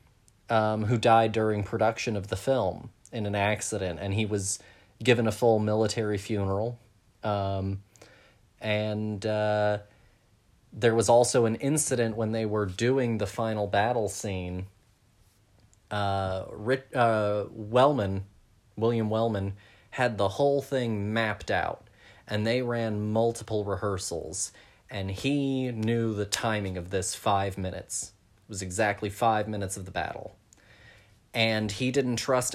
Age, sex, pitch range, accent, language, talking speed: 30-49, male, 100-115 Hz, American, English, 135 wpm